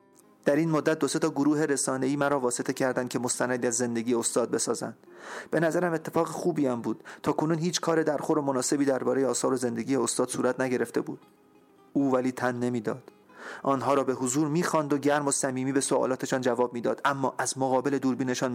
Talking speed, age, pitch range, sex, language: 190 wpm, 40-59, 125-140 Hz, male, Persian